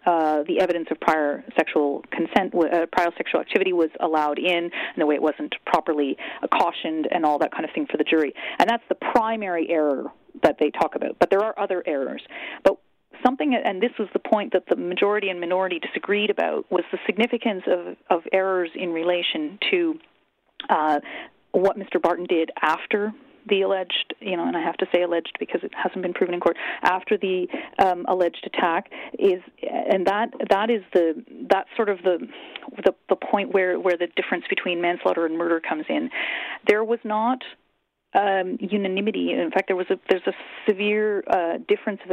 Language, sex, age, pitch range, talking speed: English, female, 40-59, 170-225 Hz, 195 wpm